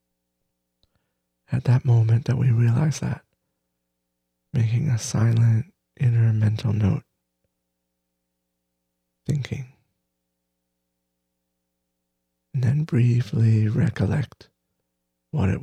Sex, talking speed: male, 75 wpm